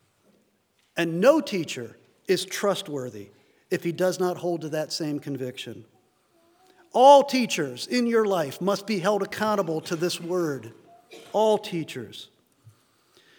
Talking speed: 125 wpm